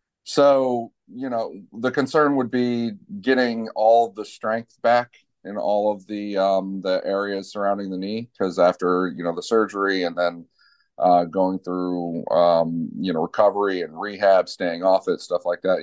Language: English